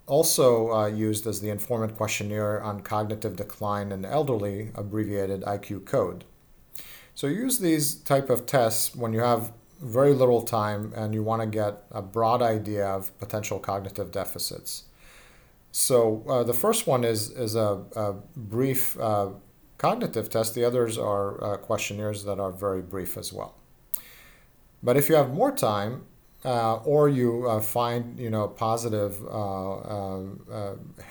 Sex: male